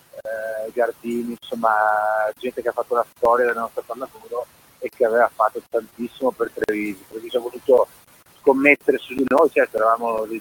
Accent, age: native, 30-49